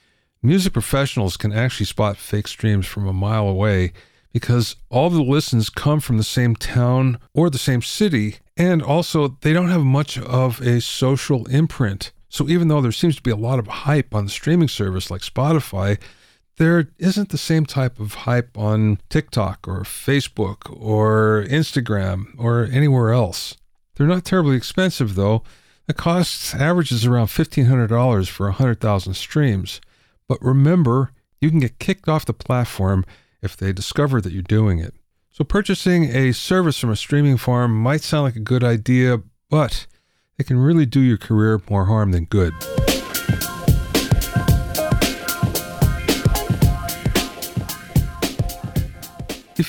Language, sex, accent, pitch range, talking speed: English, male, American, 105-150 Hz, 145 wpm